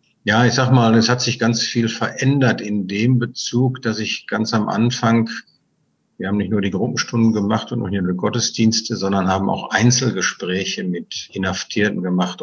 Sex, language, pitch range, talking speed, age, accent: male, German, 95-115 Hz, 180 wpm, 50-69, German